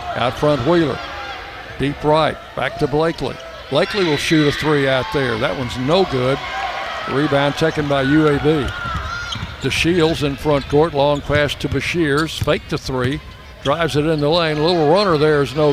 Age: 60-79